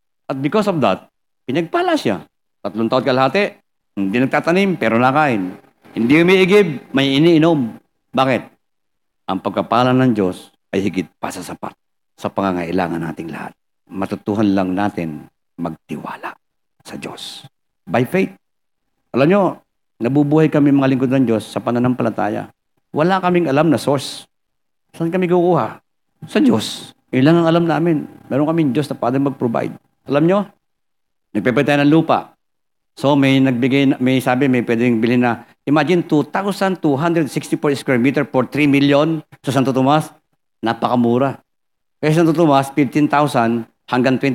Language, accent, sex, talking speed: Filipino, native, male, 135 wpm